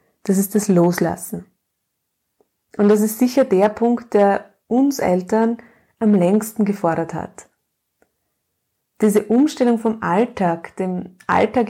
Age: 30-49